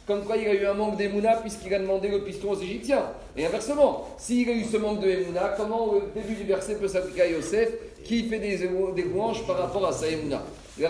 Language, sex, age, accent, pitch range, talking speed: French, male, 40-59, French, 185-230 Hz, 240 wpm